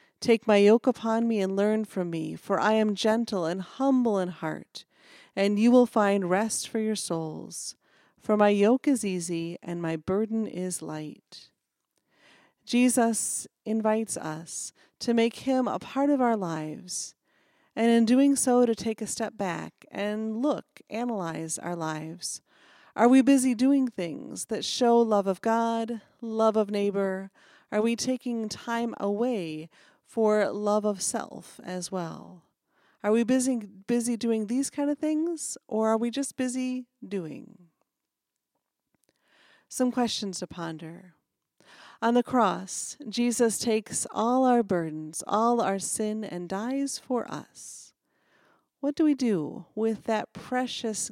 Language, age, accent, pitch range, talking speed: English, 40-59, American, 190-240 Hz, 145 wpm